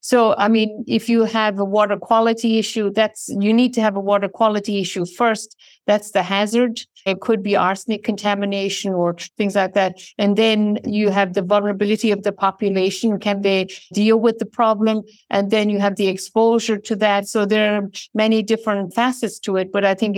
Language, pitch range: English, 185-220 Hz